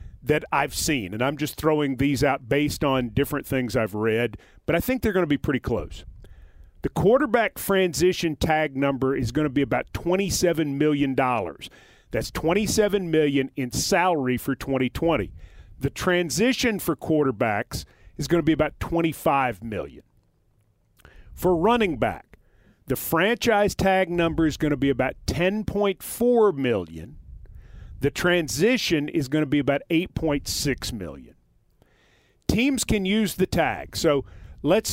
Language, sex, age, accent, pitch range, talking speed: English, male, 40-59, American, 130-185 Hz, 145 wpm